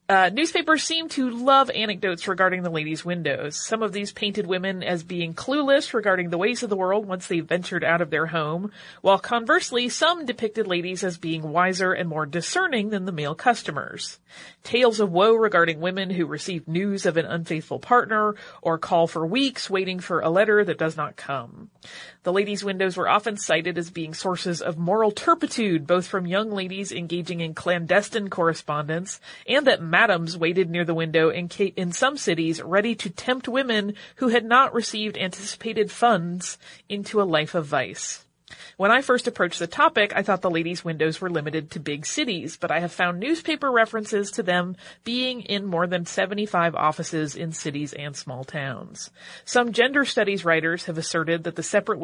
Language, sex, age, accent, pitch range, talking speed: English, female, 30-49, American, 170-220 Hz, 185 wpm